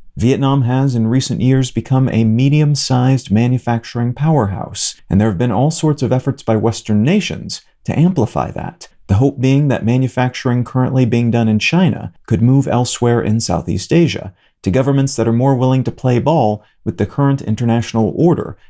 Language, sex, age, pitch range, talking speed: English, male, 40-59, 115-140 Hz, 175 wpm